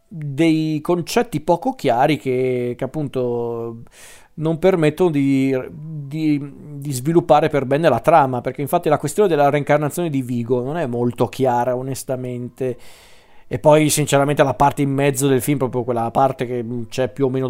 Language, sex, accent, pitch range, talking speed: Italian, male, native, 130-150 Hz, 160 wpm